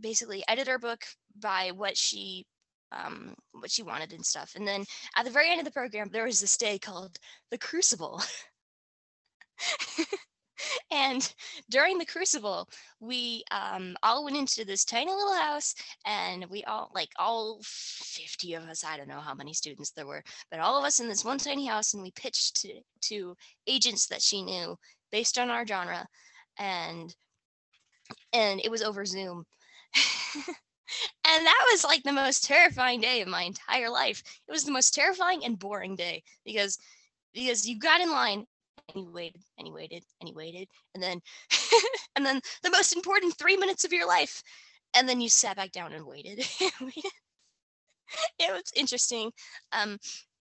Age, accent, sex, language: 10-29, American, female, English